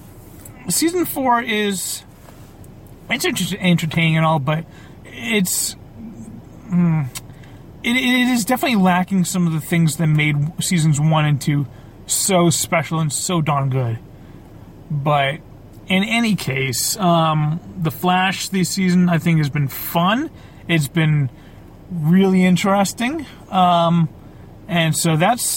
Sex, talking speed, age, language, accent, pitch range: male, 120 wpm, 30-49, English, American, 145-195 Hz